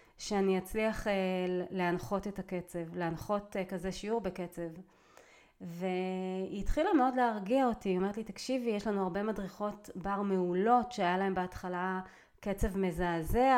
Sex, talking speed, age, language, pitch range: female, 130 wpm, 30-49, Hebrew, 185-230 Hz